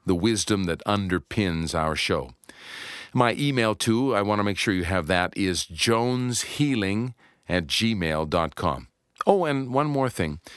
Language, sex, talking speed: English, male, 150 wpm